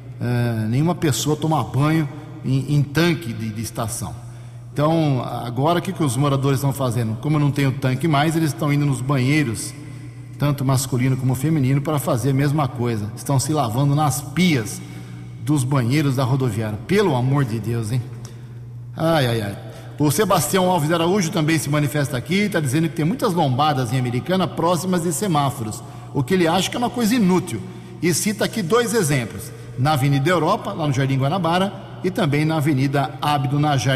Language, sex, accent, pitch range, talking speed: English, male, Brazilian, 125-155 Hz, 185 wpm